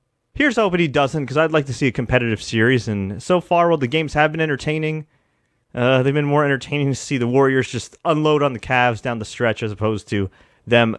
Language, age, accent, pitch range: English, 30-49, American, 115-160 Hz